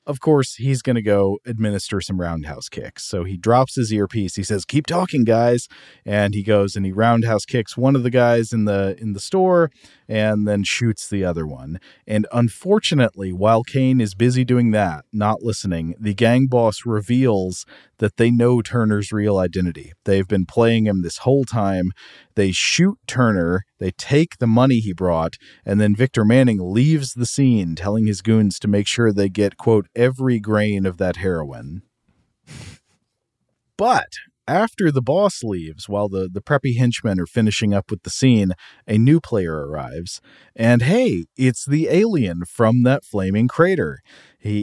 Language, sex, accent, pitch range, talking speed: English, male, American, 100-125 Hz, 175 wpm